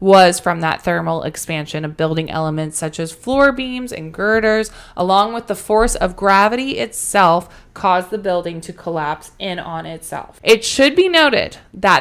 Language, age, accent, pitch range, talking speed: English, 20-39, American, 175-225 Hz, 170 wpm